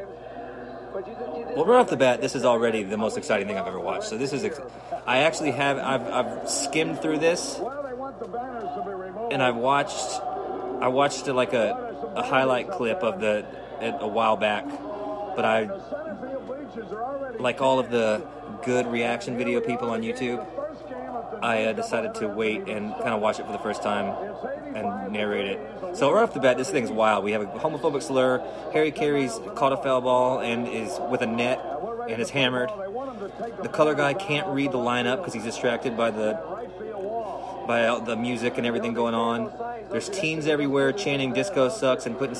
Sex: male